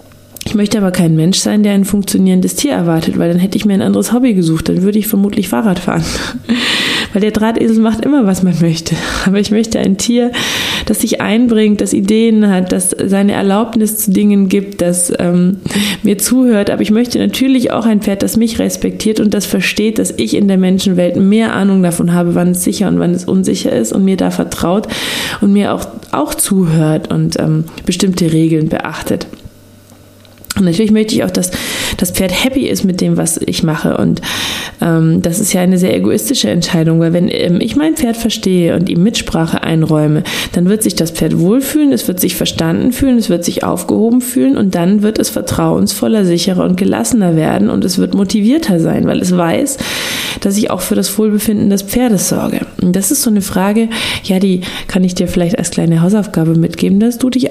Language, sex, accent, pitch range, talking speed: German, female, German, 175-225 Hz, 200 wpm